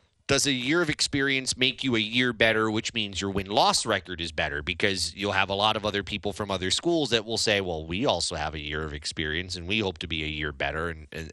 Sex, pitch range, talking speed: male, 95-130 Hz, 255 wpm